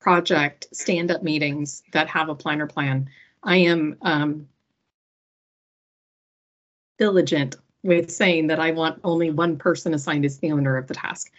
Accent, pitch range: American, 150-175 Hz